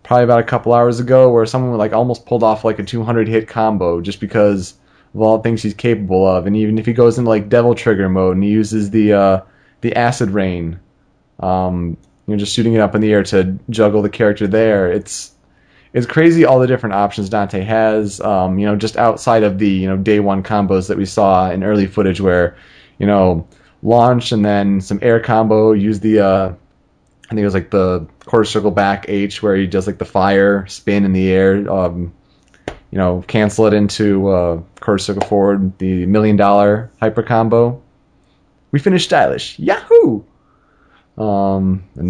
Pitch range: 95-110 Hz